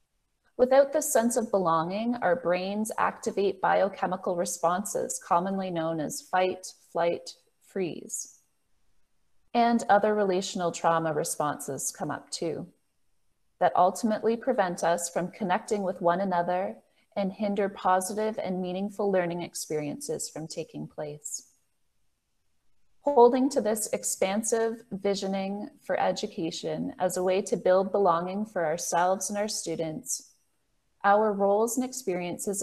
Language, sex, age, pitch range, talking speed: English, female, 30-49, 175-220 Hz, 120 wpm